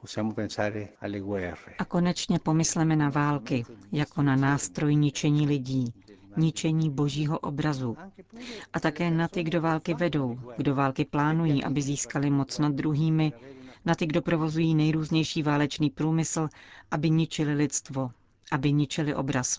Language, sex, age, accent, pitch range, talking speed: Czech, female, 40-59, native, 130-160 Hz, 125 wpm